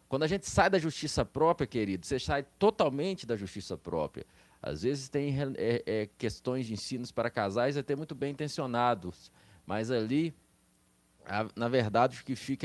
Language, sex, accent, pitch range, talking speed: Portuguese, male, Brazilian, 110-145 Hz, 160 wpm